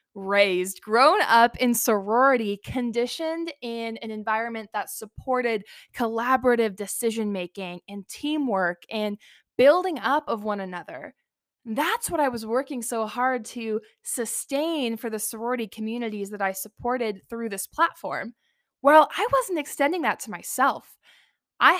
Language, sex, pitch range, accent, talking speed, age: English, female, 210-260 Hz, American, 130 wpm, 10-29